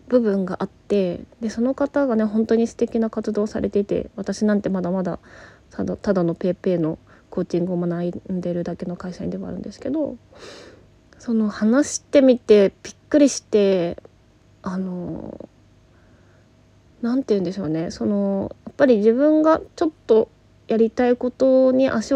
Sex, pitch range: female, 175-250 Hz